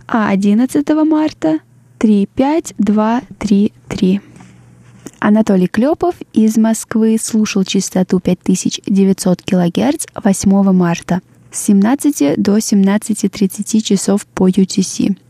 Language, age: Russian, 20-39